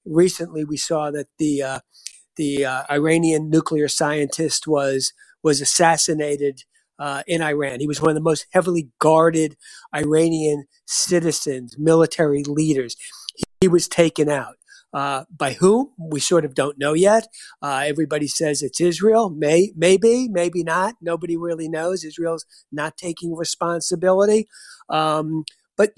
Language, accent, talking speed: English, American, 140 wpm